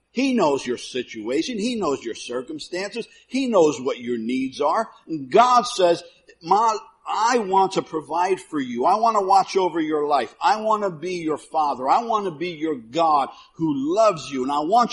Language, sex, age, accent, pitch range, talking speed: English, male, 50-69, American, 170-275 Hz, 190 wpm